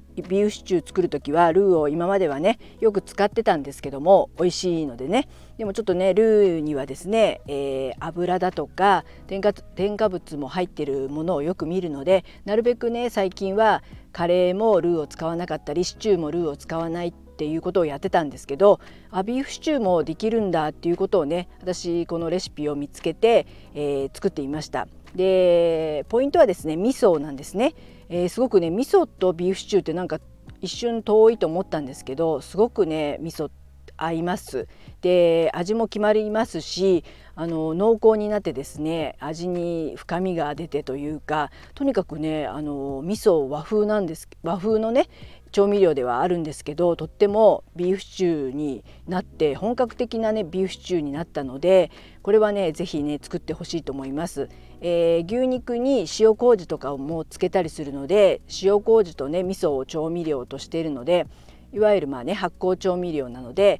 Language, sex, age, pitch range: Japanese, female, 50-69, 155-200 Hz